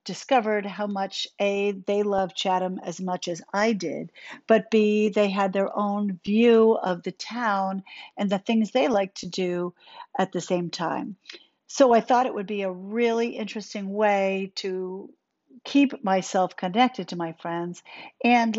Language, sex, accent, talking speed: English, female, American, 165 wpm